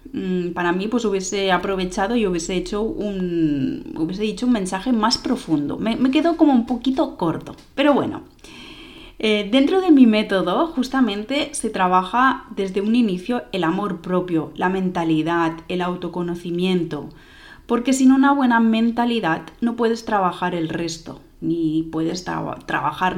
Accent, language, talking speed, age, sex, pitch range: Spanish, Spanish, 135 wpm, 30-49, female, 170-235 Hz